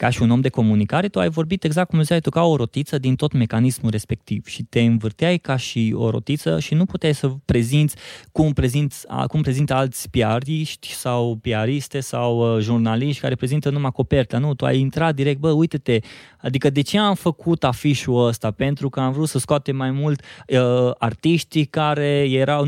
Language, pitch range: Romanian, 120-155 Hz